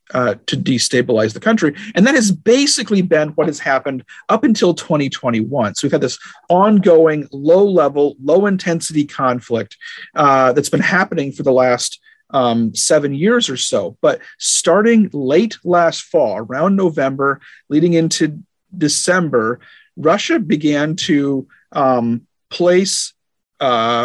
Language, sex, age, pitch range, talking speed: English, male, 40-59, 135-185 Hz, 135 wpm